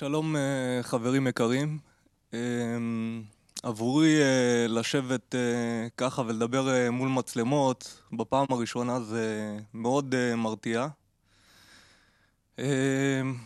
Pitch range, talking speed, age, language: 115-150 Hz, 95 wpm, 20-39, Hebrew